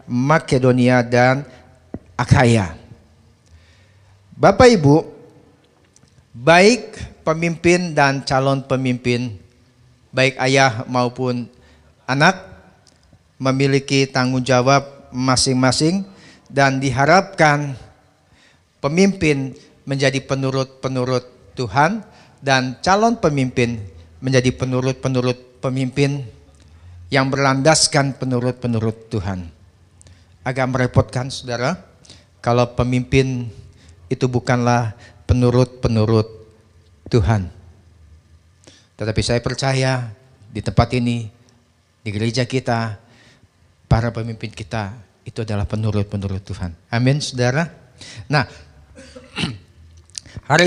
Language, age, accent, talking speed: Indonesian, 50-69, native, 75 wpm